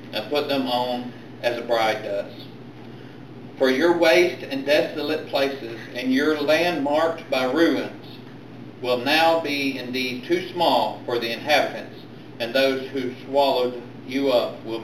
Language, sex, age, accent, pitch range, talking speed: English, male, 50-69, American, 125-155 Hz, 145 wpm